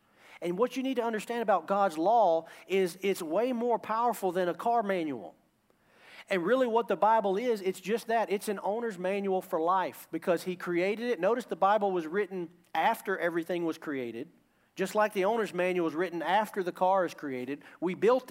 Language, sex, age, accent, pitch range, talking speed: English, male, 40-59, American, 150-205 Hz, 195 wpm